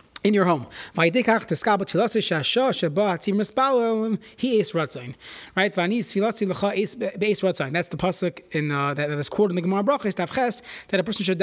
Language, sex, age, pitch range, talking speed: English, male, 20-39, 170-220 Hz, 105 wpm